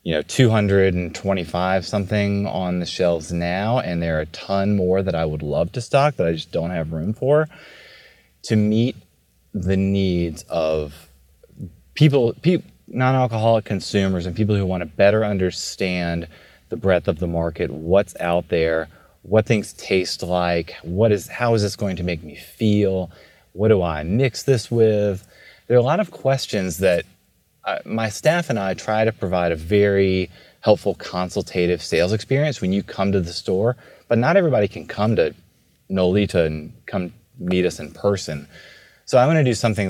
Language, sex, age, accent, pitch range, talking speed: English, male, 30-49, American, 85-110 Hz, 175 wpm